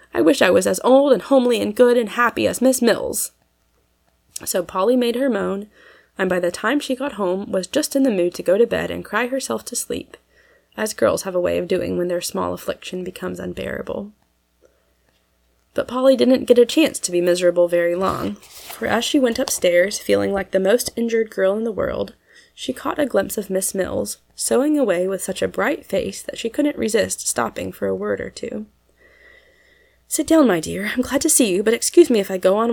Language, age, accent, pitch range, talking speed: English, 20-39, American, 180-260 Hz, 220 wpm